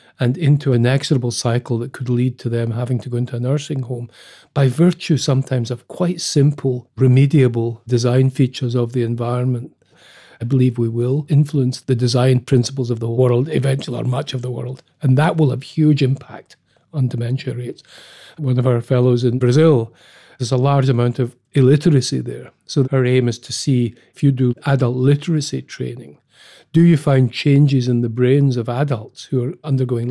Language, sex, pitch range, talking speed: English, male, 125-140 Hz, 185 wpm